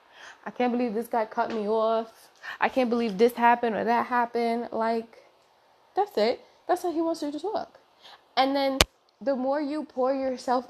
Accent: American